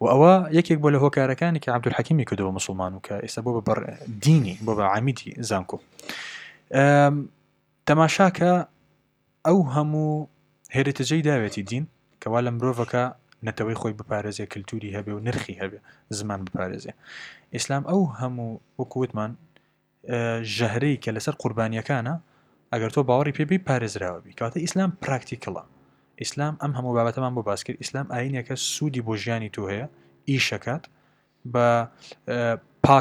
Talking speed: 100 wpm